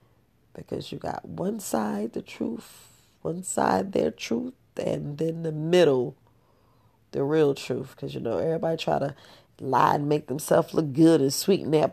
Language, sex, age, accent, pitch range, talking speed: English, female, 40-59, American, 135-160 Hz, 165 wpm